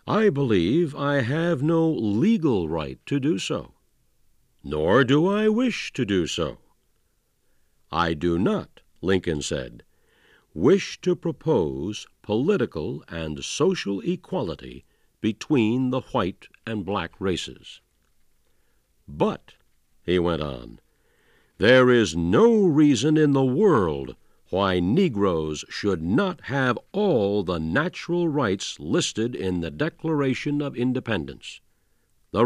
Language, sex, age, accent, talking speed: English, male, 60-79, American, 115 wpm